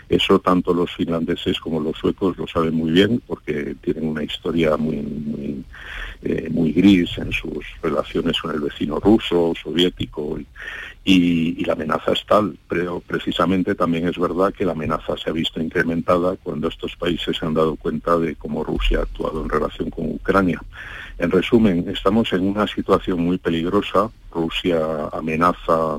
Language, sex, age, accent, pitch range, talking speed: Spanish, male, 50-69, Spanish, 85-95 Hz, 170 wpm